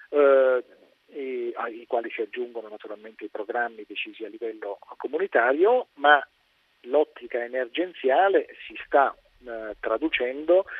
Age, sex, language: 40-59, male, Italian